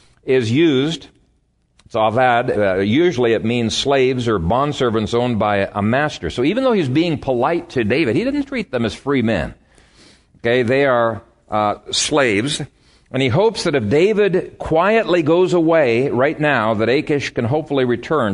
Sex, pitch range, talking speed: male, 105-140 Hz, 165 wpm